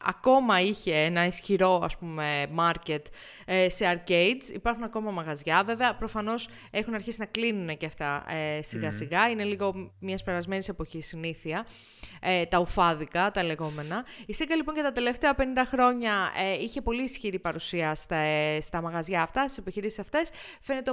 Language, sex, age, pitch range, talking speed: Greek, female, 30-49, 170-235 Hz, 155 wpm